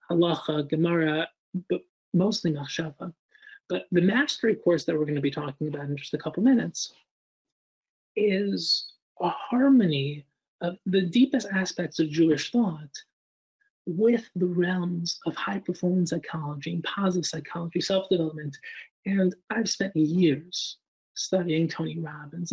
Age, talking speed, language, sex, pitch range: 30-49, 130 wpm, English, male, 155-195 Hz